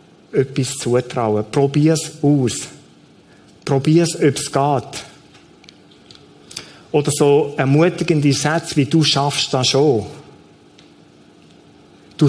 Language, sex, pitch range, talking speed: German, male, 135-170 Hz, 85 wpm